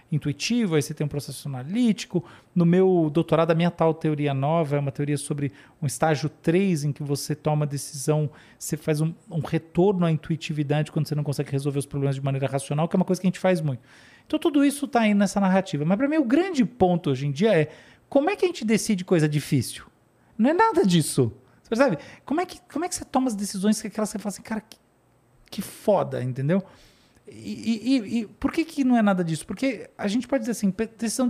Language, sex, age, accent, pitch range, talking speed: Portuguese, male, 40-59, Brazilian, 155-225 Hz, 235 wpm